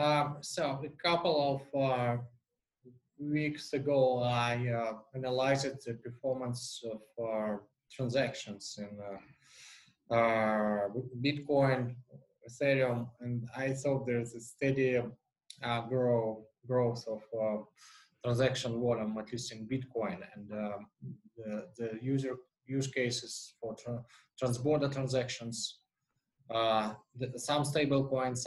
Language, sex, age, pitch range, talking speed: English, male, 20-39, 115-135 Hz, 110 wpm